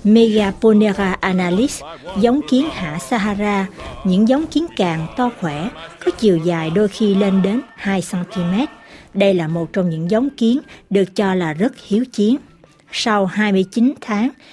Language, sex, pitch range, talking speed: Vietnamese, female, 180-245 Hz, 155 wpm